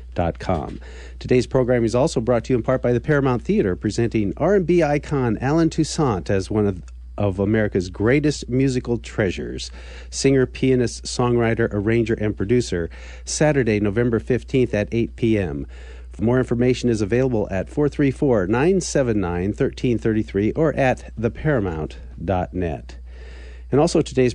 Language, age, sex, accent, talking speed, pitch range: English, 50-69, male, American, 130 wpm, 85-130 Hz